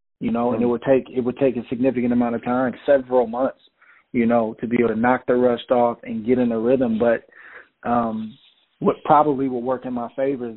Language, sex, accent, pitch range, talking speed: English, male, American, 120-145 Hz, 235 wpm